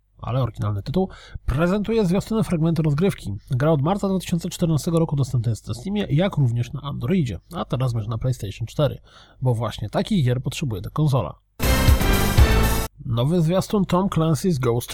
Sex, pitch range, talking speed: male, 115-180 Hz, 155 wpm